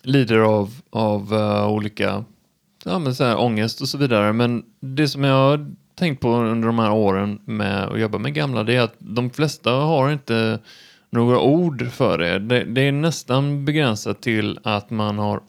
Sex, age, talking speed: male, 30-49, 185 wpm